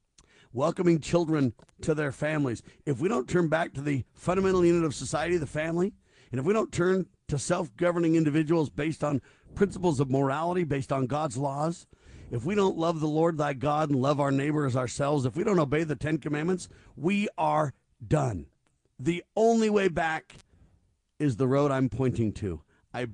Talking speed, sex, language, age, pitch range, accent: 180 wpm, male, English, 50-69, 135-170 Hz, American